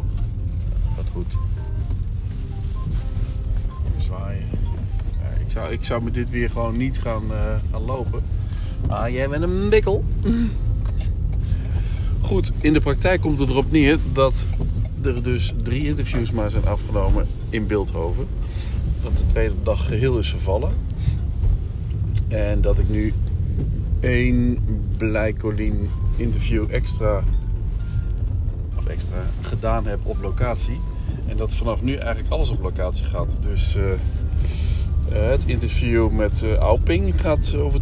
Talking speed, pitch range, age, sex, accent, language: 125 wpm, 90-110 Hz, 50-69, male, Dutch, Dutch